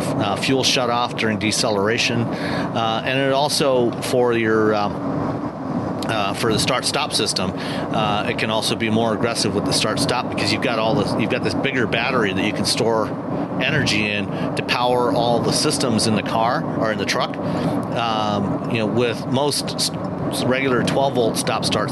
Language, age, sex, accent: English, 40-59, male, American